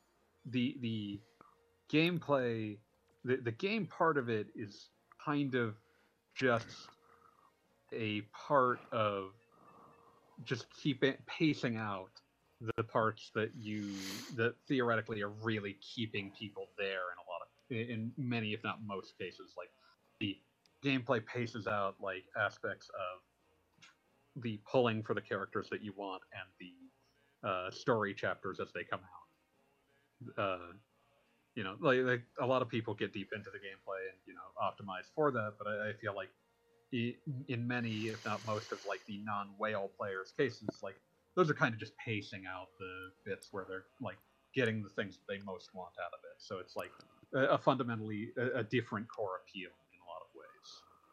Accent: American